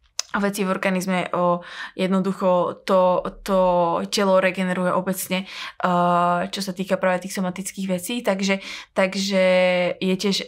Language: Slovak